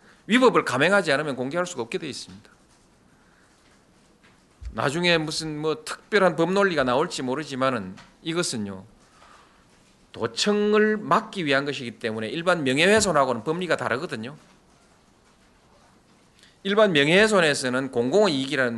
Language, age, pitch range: Korean, 40-59, 115-185 Hz